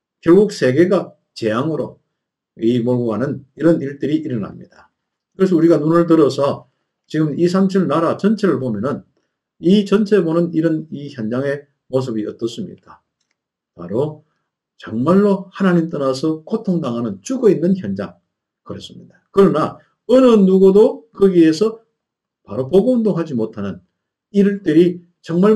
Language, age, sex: Korean, 50-69, male